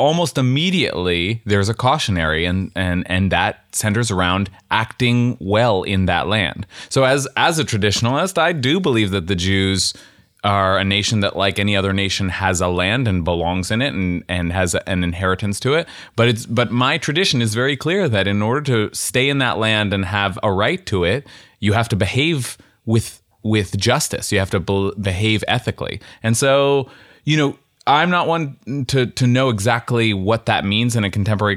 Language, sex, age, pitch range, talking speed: English, male, 30-49, 95-125 Hz, 195 wpm